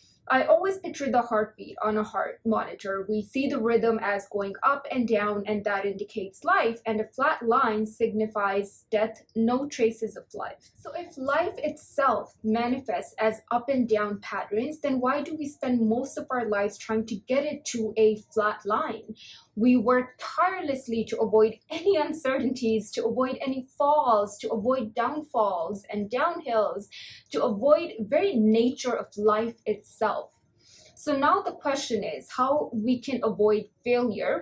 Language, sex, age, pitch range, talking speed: English, female, 20-39, 215-260 Hz, 160 wpm